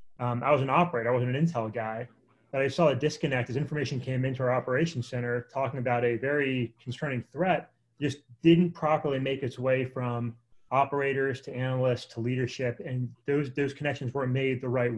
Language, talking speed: English, 190 wpm